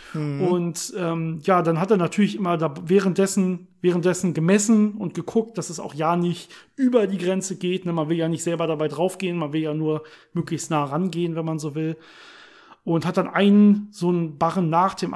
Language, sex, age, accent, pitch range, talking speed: German, male, 40-59, German, 160-200 Hz, 200 wpm